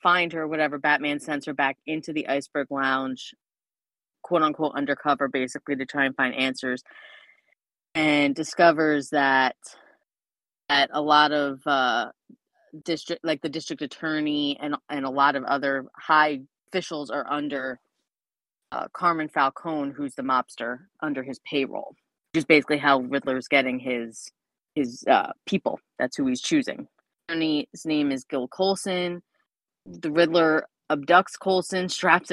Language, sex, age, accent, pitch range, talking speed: English, female, 30-49, American, 140-160 Hz, 145 wpm